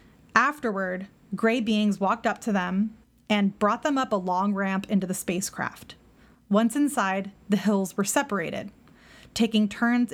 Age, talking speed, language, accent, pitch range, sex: 20-39, 150 wpm, English, American, 195-240 Hz, female